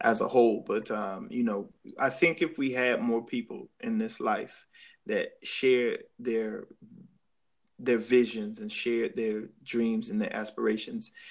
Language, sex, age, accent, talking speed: English, male, 20-39, American, 155 wpm